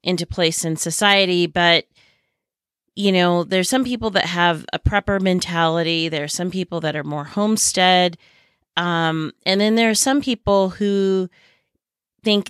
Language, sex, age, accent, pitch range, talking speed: English, female, 30-49, American, 160-190 Hz, 155 wpm